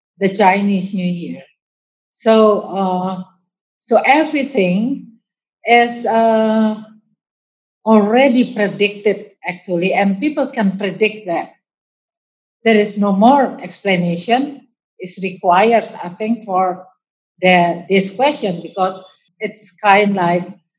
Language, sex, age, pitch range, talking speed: English, female, 50-69, 185-225 Hz, 105 wpm